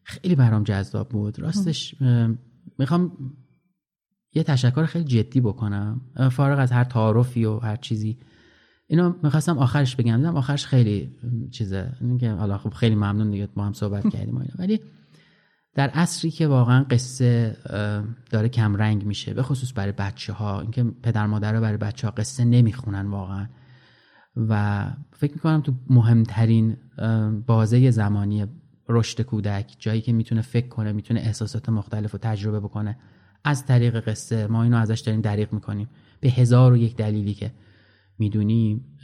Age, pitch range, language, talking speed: 30-49, 105-130 Hz, Persian, 150 wpm